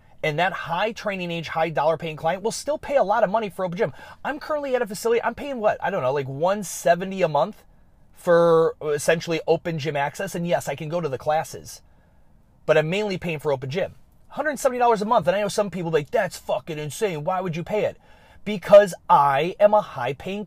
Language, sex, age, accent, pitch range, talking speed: English, male, 30-49, American, 150-210 Hz, 230 wpm